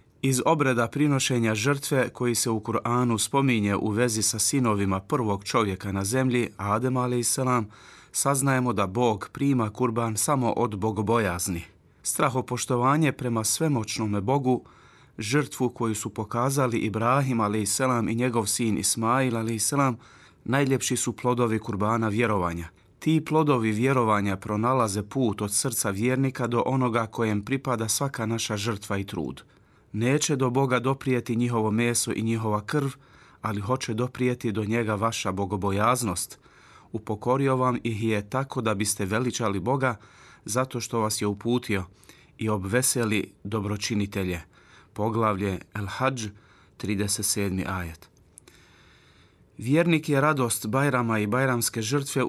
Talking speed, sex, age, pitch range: 125 wpm, male, 30-49, 105-130 Hz